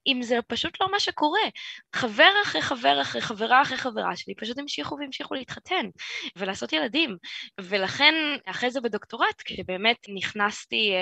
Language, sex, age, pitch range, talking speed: Hebrew, female, 20-39, 185-265 Hz, 140 wpm